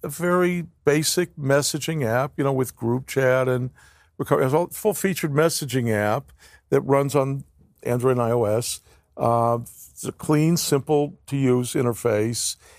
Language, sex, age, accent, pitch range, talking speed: English, male, 50-69, American, 120-155 Hz, 120 wpm